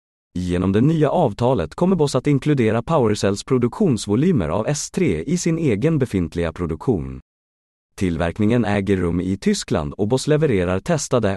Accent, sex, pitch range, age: native, male, 95-135 Hz, 30-49